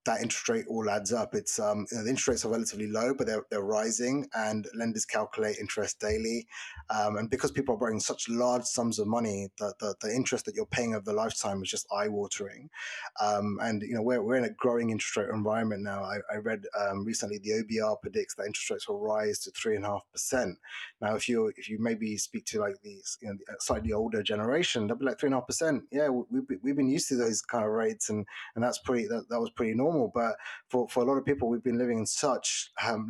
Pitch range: 105-130 Hz